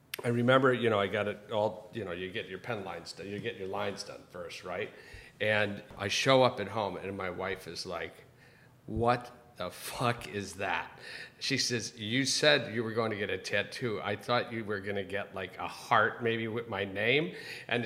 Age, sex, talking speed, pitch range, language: 40-59, male, 220 wpm, 100-125 Hz, English